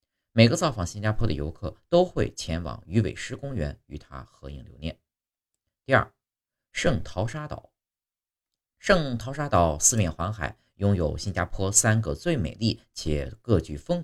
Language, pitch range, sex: Chinese, 85-115 Hz, male